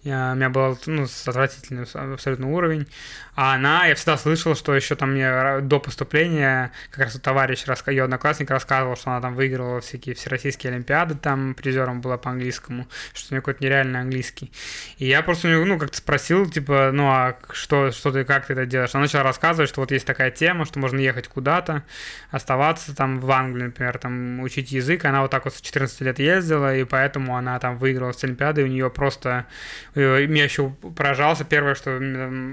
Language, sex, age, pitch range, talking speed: Russian, male, 20-39, 130-145 Hz, 195 wpm